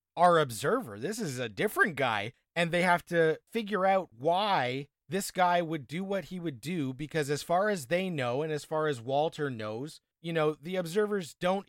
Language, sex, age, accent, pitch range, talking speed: English, male, 30-49, American, 140-175 Hz, 200 wpm